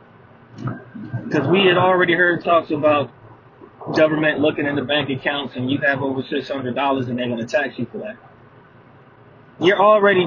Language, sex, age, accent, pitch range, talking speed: English, male, 20-39, American, 135-160 Hz, 160 wpm